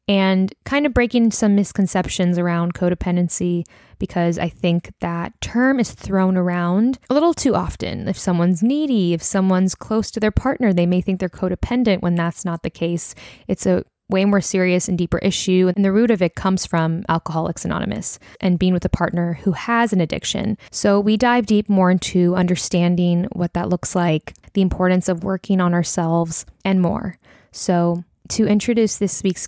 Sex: female